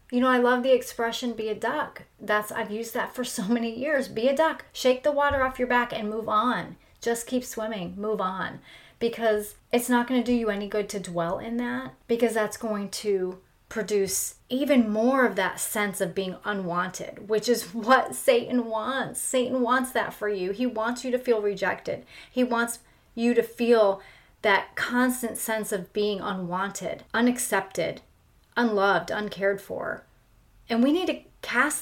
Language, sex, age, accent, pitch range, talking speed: English, female, 30-49, American, 205-255 Hz, 180 wpm